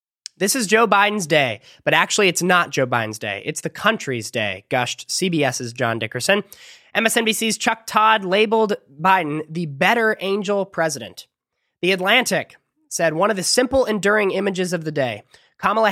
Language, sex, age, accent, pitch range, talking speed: English, male, 20-39, American, 135-195 Hz, 160 wpm